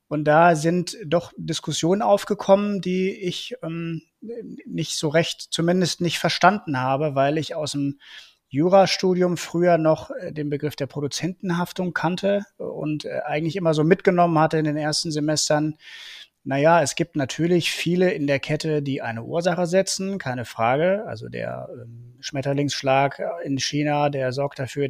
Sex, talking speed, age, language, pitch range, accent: male, 145 wpm, 30-49, German, 135-180 Hz, German